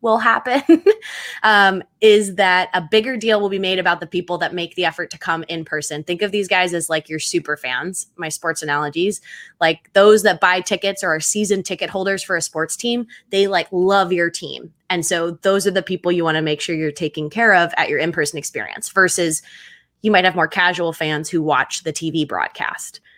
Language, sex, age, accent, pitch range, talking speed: English, female, 20-39, American, 155-195 Hz, 220 wpm